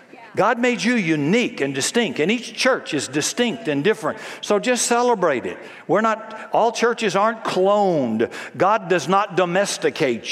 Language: English